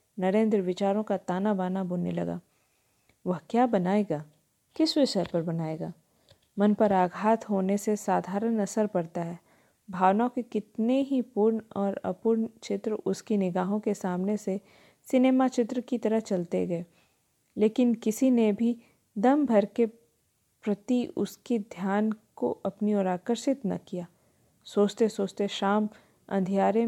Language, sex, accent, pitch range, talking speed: Hindi, female, native, 195-235 Hz, 145 wpm